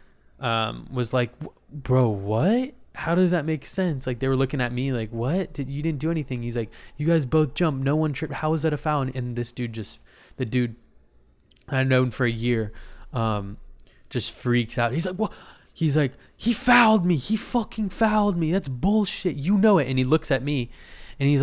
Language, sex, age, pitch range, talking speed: English, male, 20-39, 110-155 Hz, 220 wpm